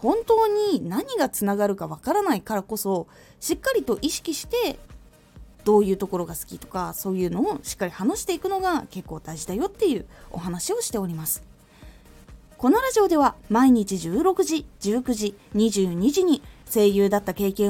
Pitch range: 195-320 Hz